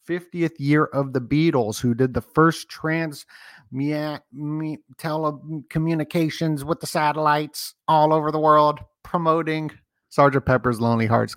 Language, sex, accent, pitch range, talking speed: English, male, American, 115-150 Hz, 120 wpm